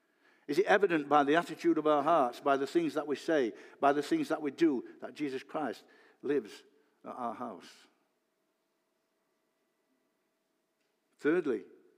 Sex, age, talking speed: male, 60-79, 145 wpm